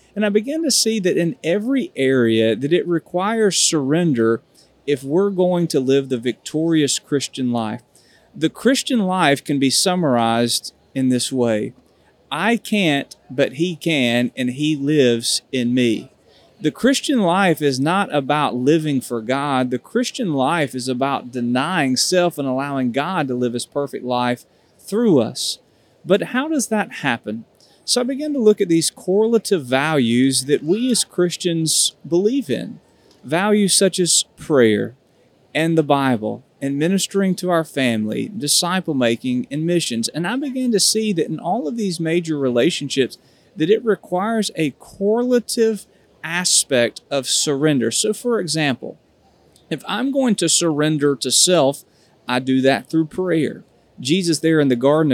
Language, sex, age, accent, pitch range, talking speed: English, male, 40-59, American, 130-185 Hz, 155 wpm